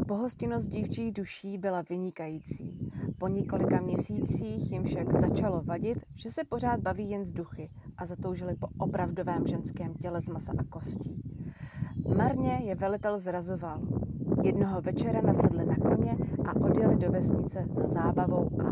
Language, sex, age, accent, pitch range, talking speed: Czech, female, 30-49, native, 170-210 Hz, 145 wpm